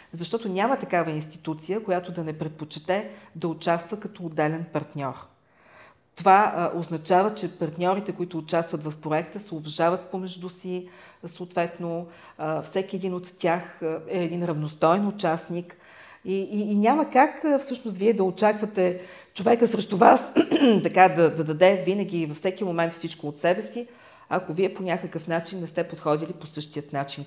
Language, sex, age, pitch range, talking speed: Bulgarian, female, 40-59, 160-205 Hz, 155 wpm